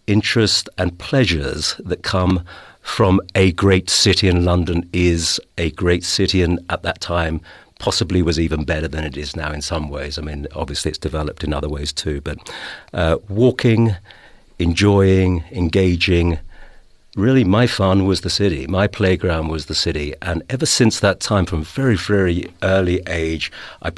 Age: 50-69